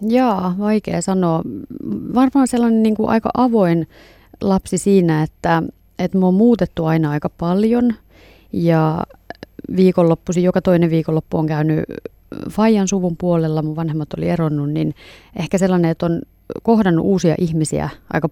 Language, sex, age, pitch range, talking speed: Finnish, female, 30-49, 155-185 Hz, 130 wpm